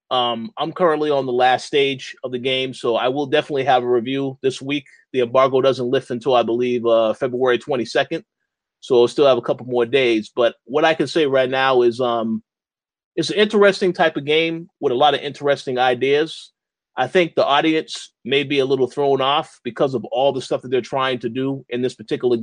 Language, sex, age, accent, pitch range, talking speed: English, male, 30-49, American, 125-155 Hz, 215 wpm